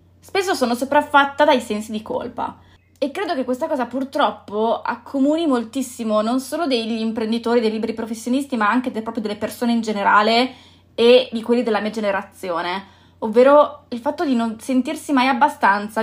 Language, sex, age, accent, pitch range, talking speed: Italian, female, 20-39, native, 220-265 Hz, 160 wpm